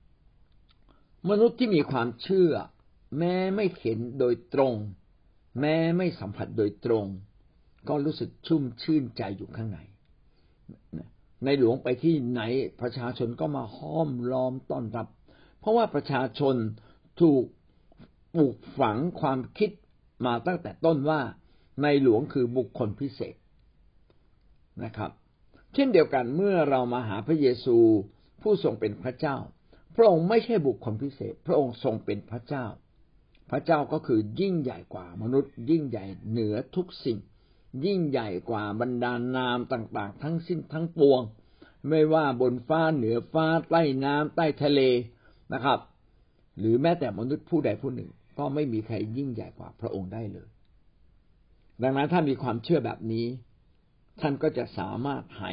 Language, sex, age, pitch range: Thai, male, 60-79, 110-155 Hz